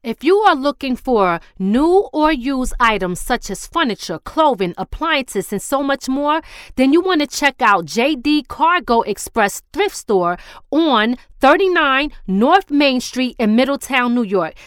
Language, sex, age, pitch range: English, female, 30-49, 215-295 Hz